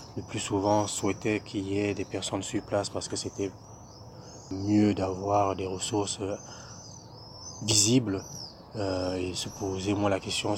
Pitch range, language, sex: 95-110 Hz, French, male